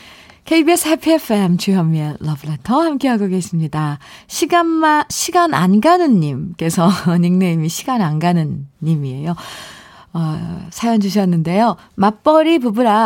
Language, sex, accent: Korean, female, native